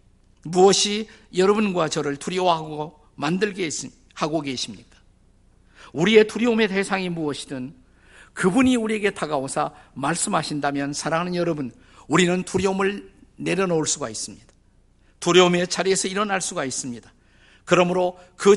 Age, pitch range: 50-69, 135-195 Hz